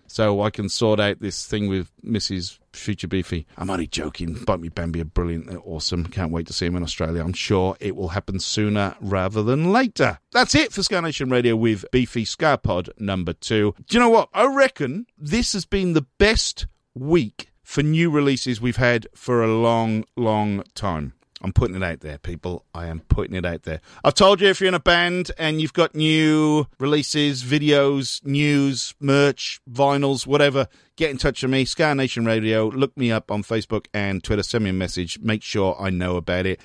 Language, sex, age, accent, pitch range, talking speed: English, male, 40-59, British, 100-165 Hz, 205 wpm